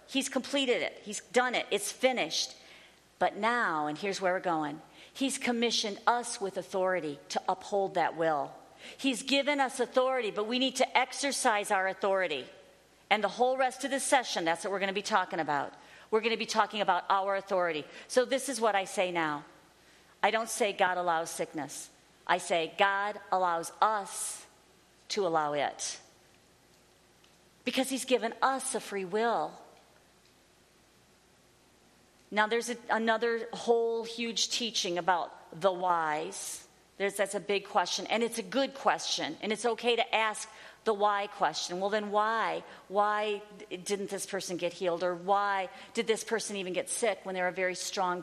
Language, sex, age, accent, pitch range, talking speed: English, female, 50-69, American, 180-230 Hz, 170 wpm